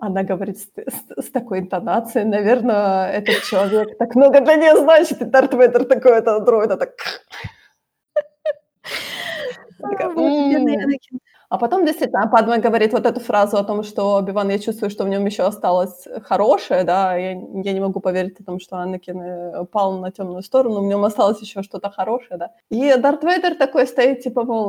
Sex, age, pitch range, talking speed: female, 20-39, 190-235 Hz, 165 wpm